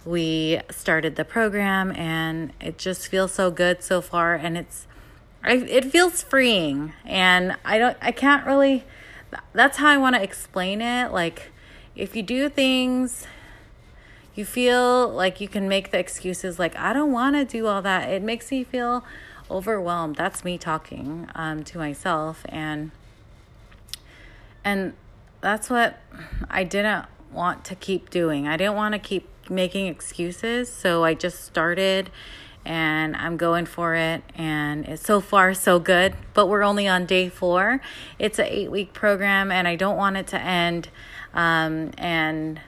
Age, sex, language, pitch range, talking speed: 30-49, female, English, 165-205 Hz, 160 wpm